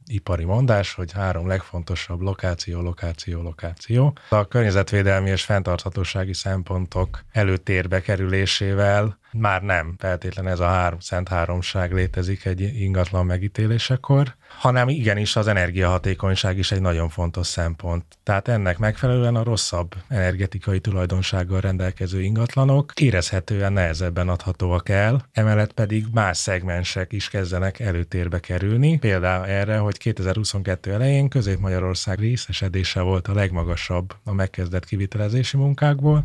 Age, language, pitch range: 30-49, Hungarian, 90-110 Hz